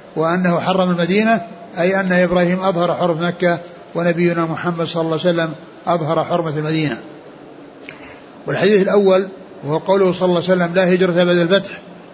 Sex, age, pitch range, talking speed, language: male, 60-79, 175-200 Hz, 150 wpm, Arabic